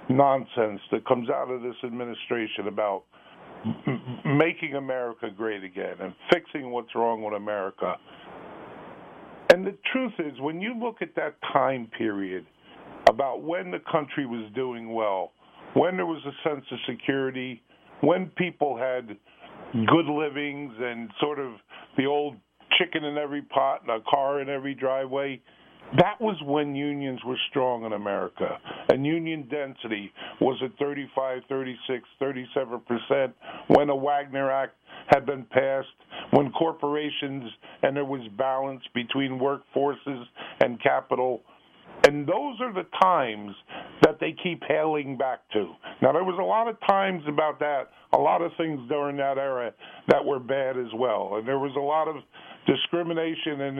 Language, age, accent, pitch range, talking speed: English, 50-69, American, 125-150 Hz, 150 wpm